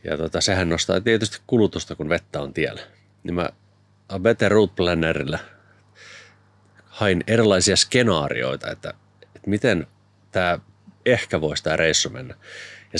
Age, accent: 30-49, native